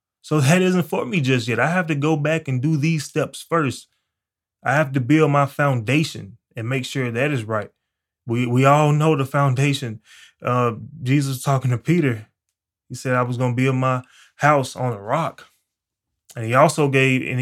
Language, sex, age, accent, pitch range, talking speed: English, male, 20-39, American, 115-145 Hz, 195 wpm